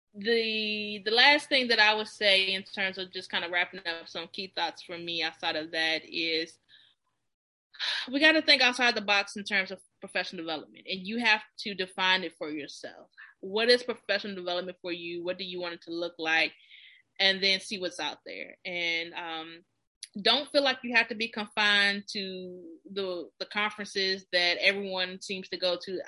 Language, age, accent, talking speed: English, 20-39, American, 195 wpm